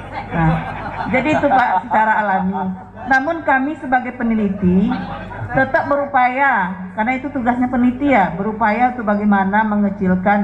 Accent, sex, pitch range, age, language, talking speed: native, female, 185-240 Hz, 50-69, Indonesian, 120 wpm